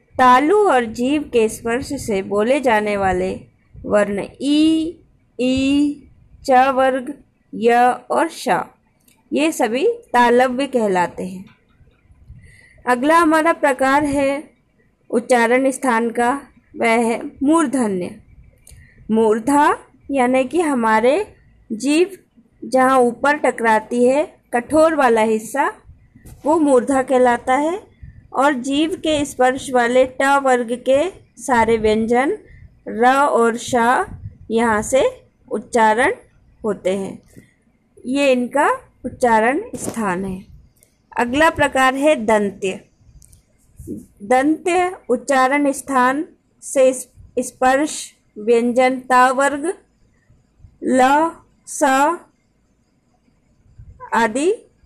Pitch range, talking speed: 230-290 Hz, 95 wpm